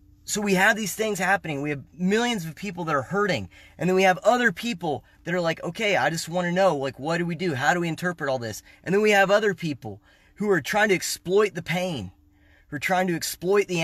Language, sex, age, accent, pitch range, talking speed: English, male, 20-39, American, 135-210 Hz, 255 wpm